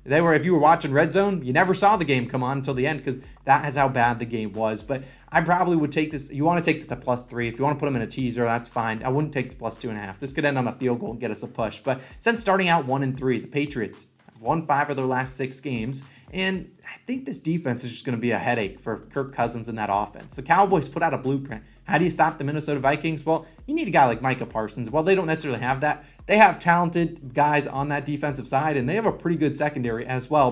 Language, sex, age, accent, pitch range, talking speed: English, male, 20-39, American, 125-160 Hz, 295 wpm